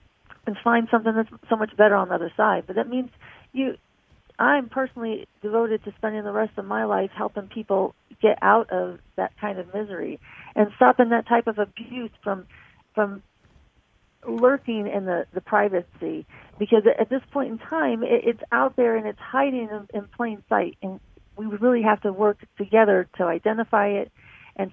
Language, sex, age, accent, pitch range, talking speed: English, female, 40-59, American, 190-230 Hz, 180 wpm